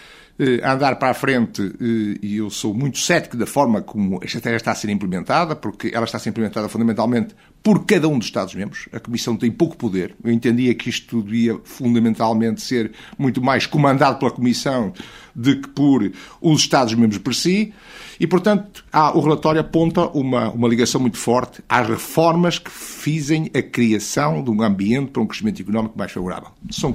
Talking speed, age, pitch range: 180 wpm, 50-69, 110-140 Hz